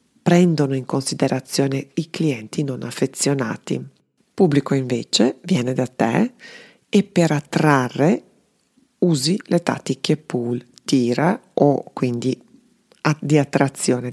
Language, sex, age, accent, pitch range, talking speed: Italian, female, 40-59, native, 130-165 Hz, 105 wpm